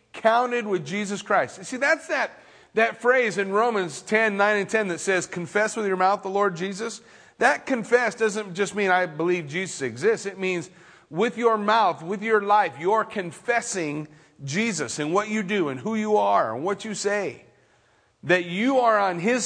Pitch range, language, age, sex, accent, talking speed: 160-225 Hz, English, 40-59, male, American, 190 wpm